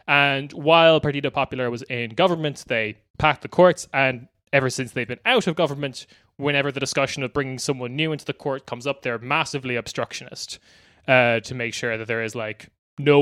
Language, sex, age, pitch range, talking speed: English, male, 20-39, 120-150 Hz, 195 wpm